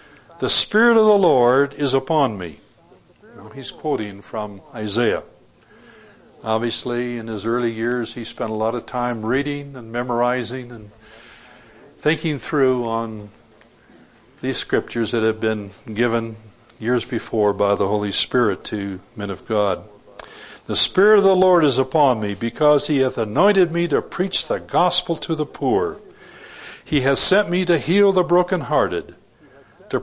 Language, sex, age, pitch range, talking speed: English, male, 60-79, 110-150 Hz, 150 wpm